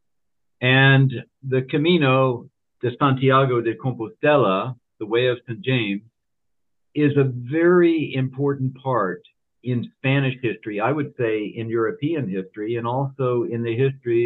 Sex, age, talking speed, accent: male, 50-69, 130 wpm, American